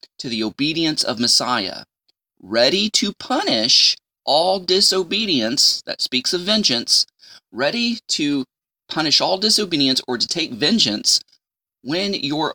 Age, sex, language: 30-49, male, English